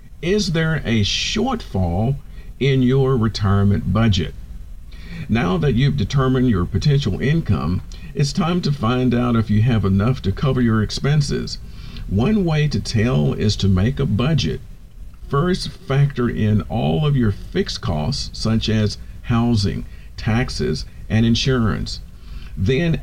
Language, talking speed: English, 135 wpm